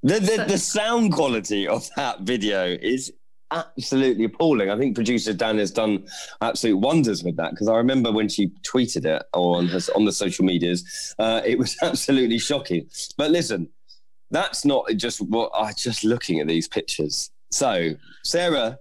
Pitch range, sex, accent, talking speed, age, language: 105-165 Hz, male, British, 170 wpm, 20-39, English